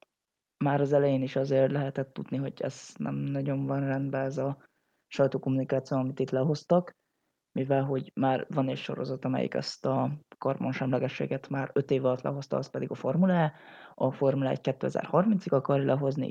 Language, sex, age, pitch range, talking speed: Hungarian, female, 20-39, 130-145 Hz, 160 wpm